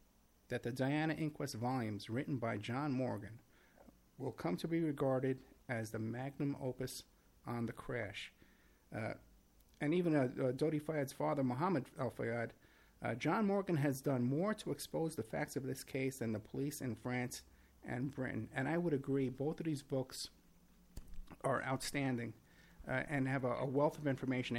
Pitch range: 120-155 Hz